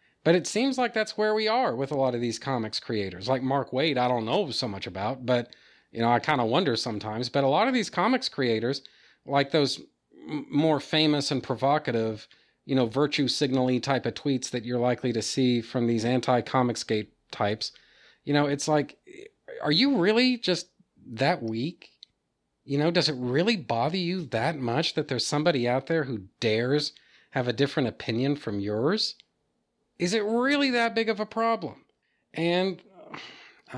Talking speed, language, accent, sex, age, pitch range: 185 wpm, English, American, male, 40-59, 130-195 Hz